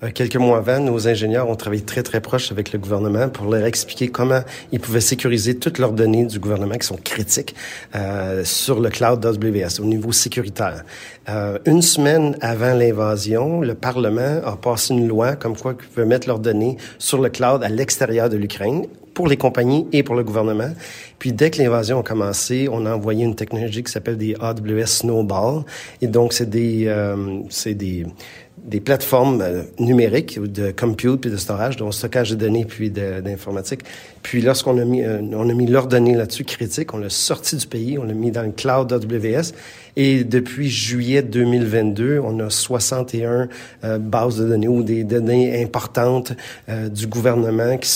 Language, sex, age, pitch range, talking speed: French, male, 40-59, 110-125 Hz, 190 wpm